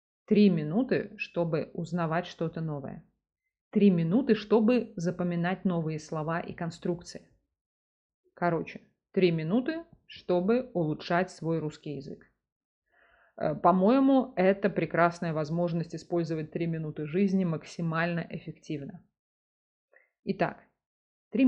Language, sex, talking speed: Russian, female, 95 wpm